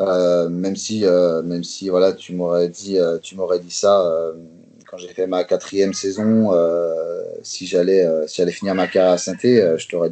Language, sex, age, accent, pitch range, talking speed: French, male, 30-49, French, 85-110 Hz, 215 wpm